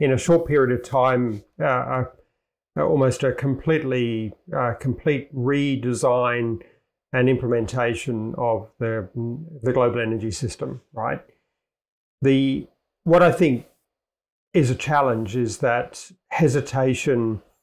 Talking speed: 110 wpm